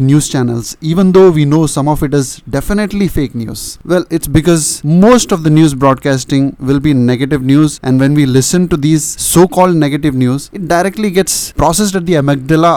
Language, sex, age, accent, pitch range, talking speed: Malayalam, male, 20-39, native, 135-175 Hz, 195 wpm